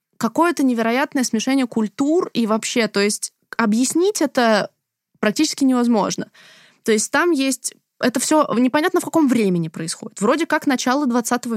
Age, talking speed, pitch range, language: 20-39, 140 wpm, 215-270 Hz, Russian